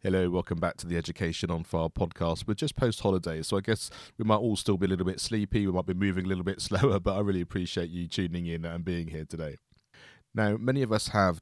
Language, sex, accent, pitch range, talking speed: English, male, British, 90-110 Hz, 250 wpm